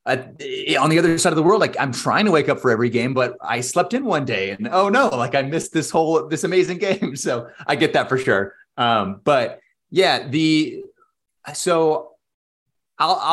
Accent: American